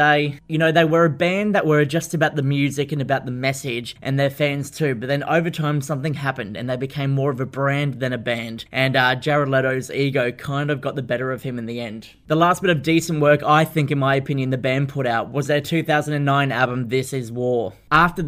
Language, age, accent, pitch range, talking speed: English, 20-39, Australian, 130-150 Hz, 245 wpm